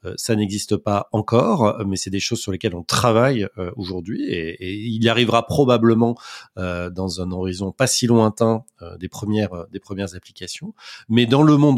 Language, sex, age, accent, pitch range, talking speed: French, male, 30-49, French, 95-120 Hz, 175 wpm